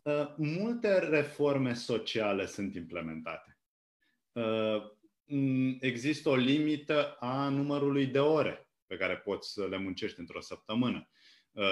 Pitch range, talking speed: 105-150 Hz, 100 wpm